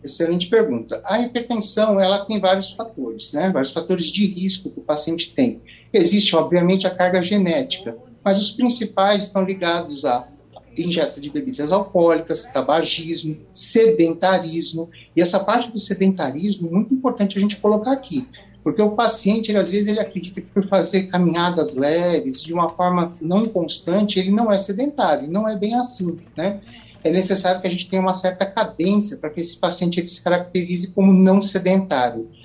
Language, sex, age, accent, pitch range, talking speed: Portuguese, male, 60-79, Brazilian, 160-210 Hz, 165 wpm